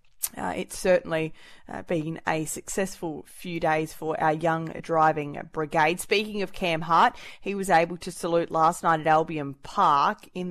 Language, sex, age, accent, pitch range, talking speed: English, female, 20-39, Australian, 160-190 Hz, 165 wpm